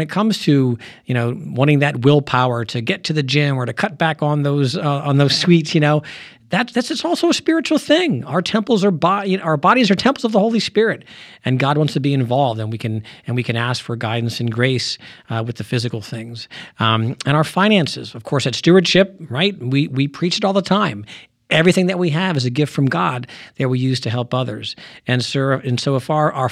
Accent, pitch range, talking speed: American, 125-170 Hz, 240 wpm